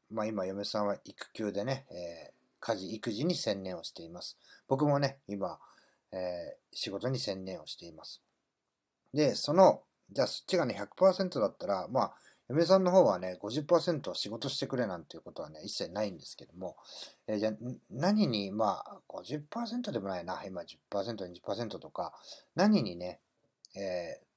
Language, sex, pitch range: Japanese, male, 95-140 Hz